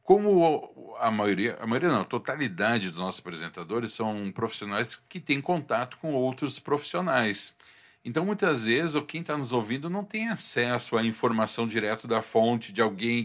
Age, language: 50-69, Portuguese